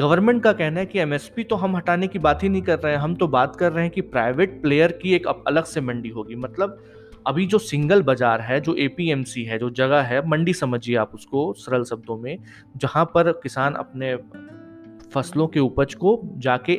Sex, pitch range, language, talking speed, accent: male, 120-170 Hz, Hindi, 210 wpm, native